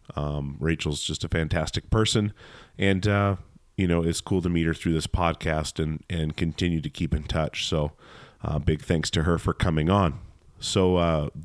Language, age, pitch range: English, 30-49, 80-95 Hz